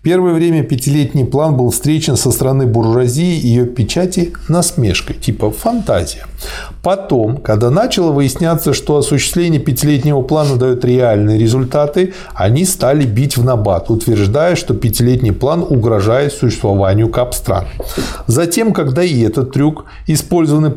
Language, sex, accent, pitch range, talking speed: Russian, male, native, 120-160 Hz, 125 wpm